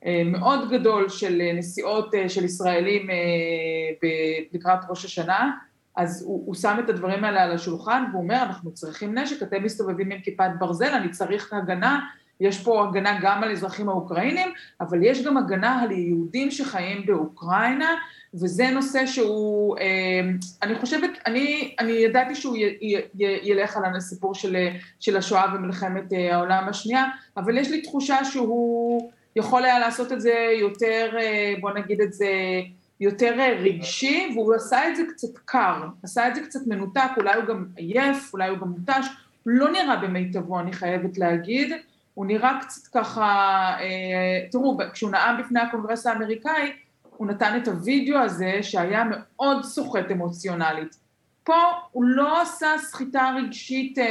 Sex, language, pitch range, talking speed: female, Hebrew, 185-255 Hz, 150 wpm